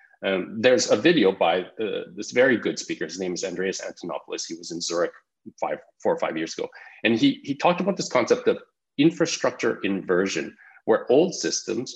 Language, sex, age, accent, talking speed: German, male, 30-49, Canadian, 190 wpm